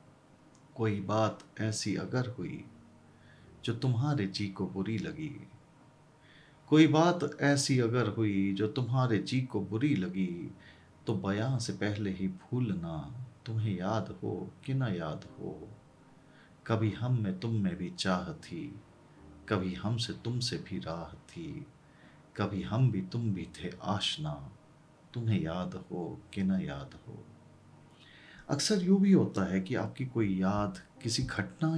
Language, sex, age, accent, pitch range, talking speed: Hindi, male, 40-59, native, 100-135 Hz, 145 wpm